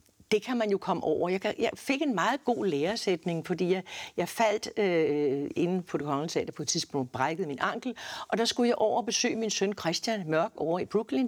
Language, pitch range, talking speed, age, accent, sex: Danish, 175-290 Hz, 220 wpm, 60-79, native, female